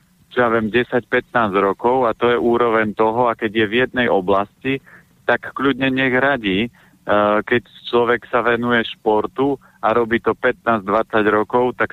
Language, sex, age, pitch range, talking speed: Slovak, male, 40-59, 105-120 Hz, 155 wpm